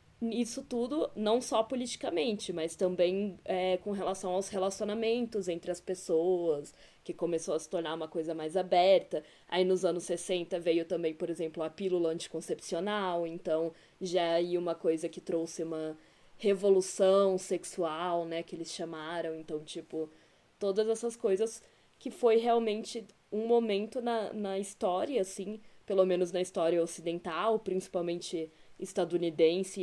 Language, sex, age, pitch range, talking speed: Portuguese, female, 10-29, 170-210 Hz, 140 wpm